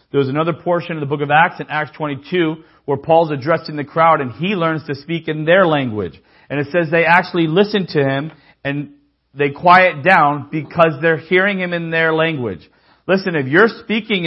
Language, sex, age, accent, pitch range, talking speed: English, male, 40-59, American, 105-160 Hz, 200 wpm